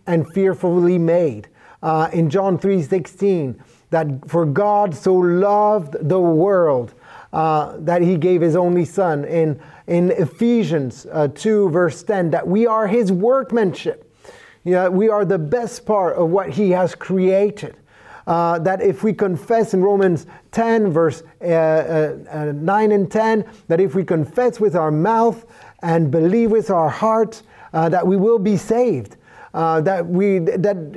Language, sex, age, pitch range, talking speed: English, male, 30-49, 165-210 Hz, 160 wpm